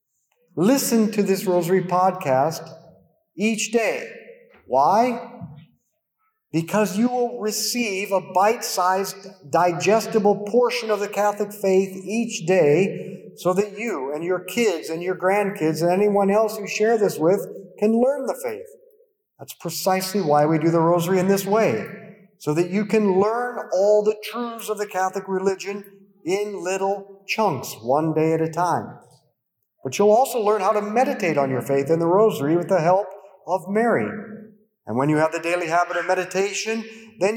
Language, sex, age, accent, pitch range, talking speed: English, male, 50-69, American, 175-225 Hz, 160 wpm